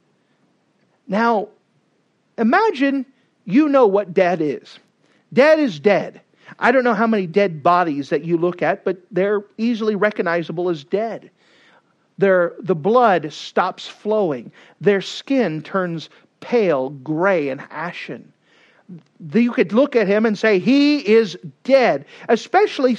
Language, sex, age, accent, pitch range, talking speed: English, male, 50-69, American, 170-245 Hz, 130 wpm